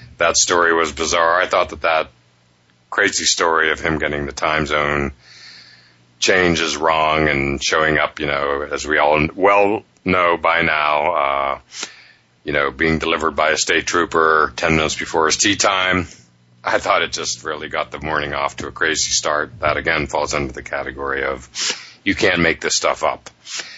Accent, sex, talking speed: American, male, 180 wpm